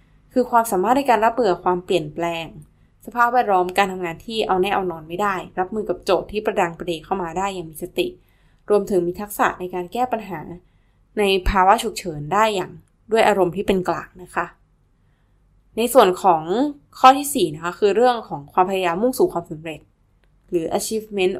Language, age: Thai, 10-29